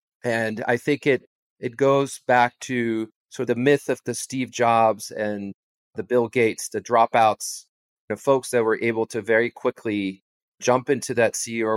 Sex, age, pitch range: male, 40-59, 115-140 Hz